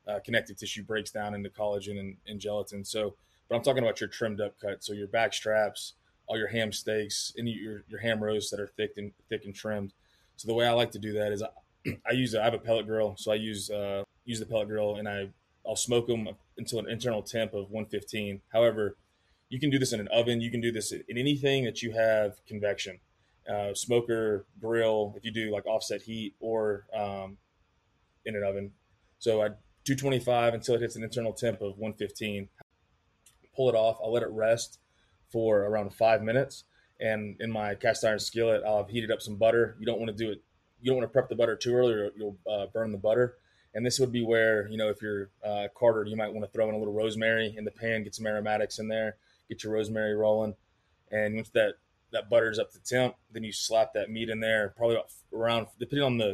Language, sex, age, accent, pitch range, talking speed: English, male, 20-39, American, 105-115 Hz, 225 wpm